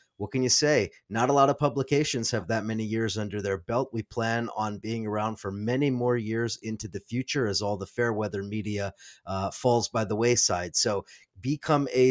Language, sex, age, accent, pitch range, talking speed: English, male, 30-49, American, 105-125 Hz, 210 wpm